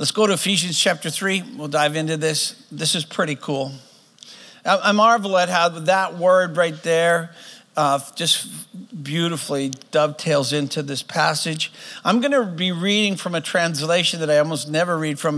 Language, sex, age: English, male, 50-69